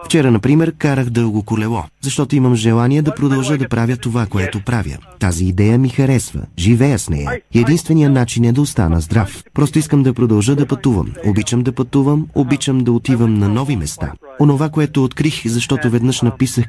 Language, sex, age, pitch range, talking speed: Bulgarian, male, 30-49, 110-145 Hz, 175 wpm